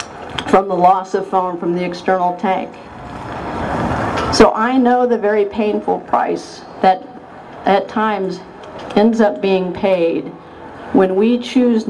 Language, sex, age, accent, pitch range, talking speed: English, female, 50-69, American, 165-215 Hz, 130 wpm